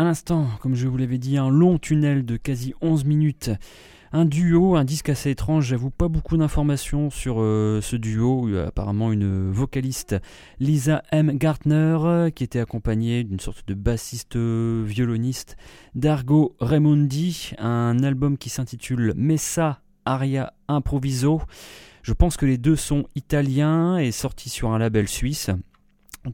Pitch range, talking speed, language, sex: 115-150 Hz, 155 wpm, French, male